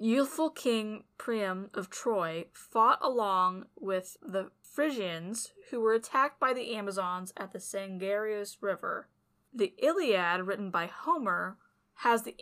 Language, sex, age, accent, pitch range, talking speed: English, female, 20-39, American, 200-270 Hz, 130 wpm